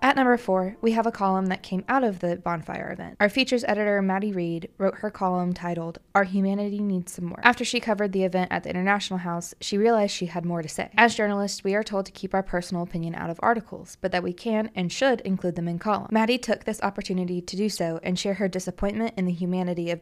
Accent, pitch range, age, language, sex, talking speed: American, 175-210 Hz, 20-39, English, female, 245 wpm